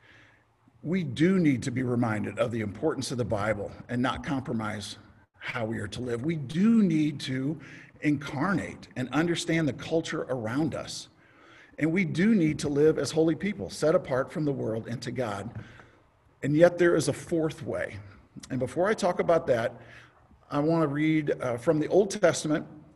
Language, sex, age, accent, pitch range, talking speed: English, male, 50-69, American, 115-155 Hz, 180 wpm